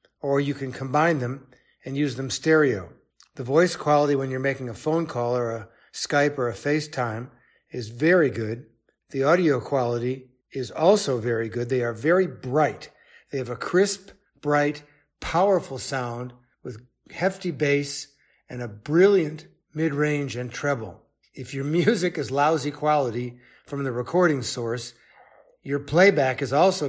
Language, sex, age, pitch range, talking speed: English, male, 60-79, 125-150 Hz, 150 wpm